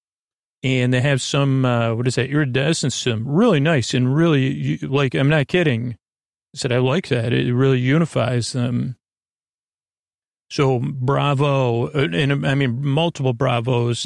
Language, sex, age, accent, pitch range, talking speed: English, male, 40-59, American, 120-135 Hz, 160 wpm